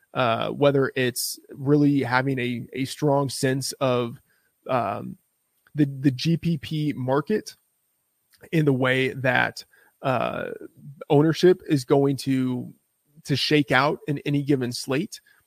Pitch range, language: 130-155 Hz, English